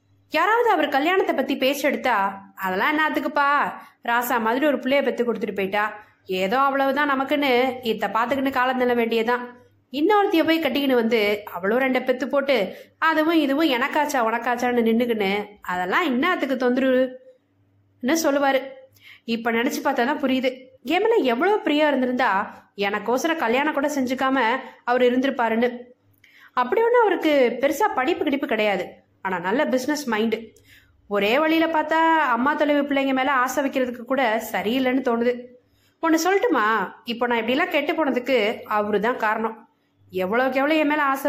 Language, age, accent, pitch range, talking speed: Tamil, 20-39, native, 225-285 Hz, 110 wpm